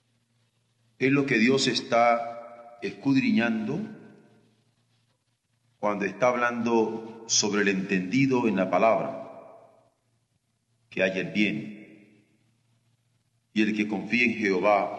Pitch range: 110-125 Hz